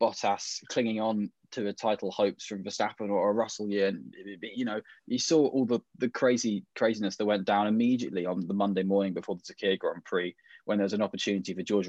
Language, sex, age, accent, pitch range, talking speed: English, male, 10-29, British, 100-120 Hz, 215 wpm